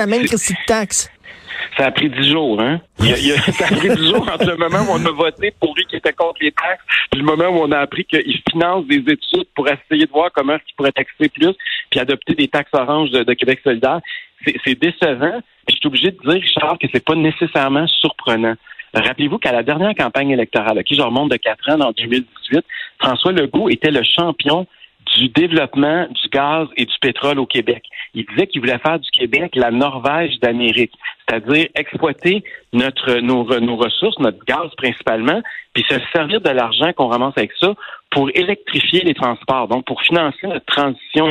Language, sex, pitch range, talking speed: French, male, 130-180 Hz, 210 wpm